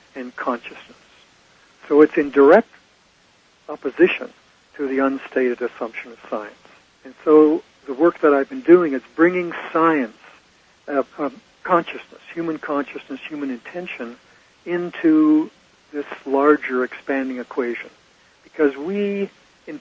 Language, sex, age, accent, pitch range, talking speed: English, male, 60-79, American, 135-170 Hz, 120 wpm